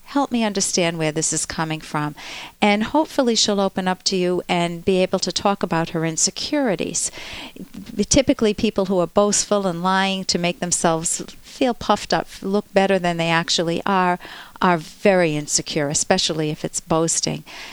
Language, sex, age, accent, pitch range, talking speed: English, female, 50-69, American, 170-220 Hz, 165 wpm